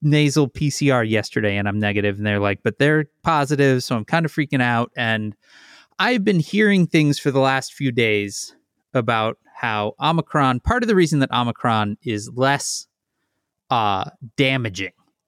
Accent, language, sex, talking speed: American, English, male, 160 wpm